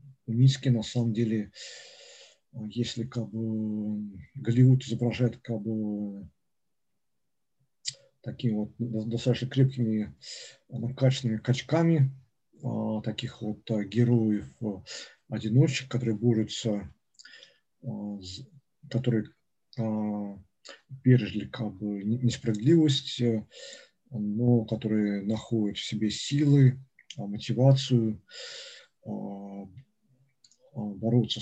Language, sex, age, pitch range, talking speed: Russian, male, 50-69, 105-125 Hz, 80 wpm